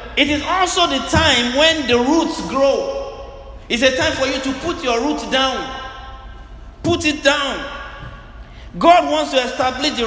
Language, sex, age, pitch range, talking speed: English, male, 50-69, 195-285 Hz, 160 wpm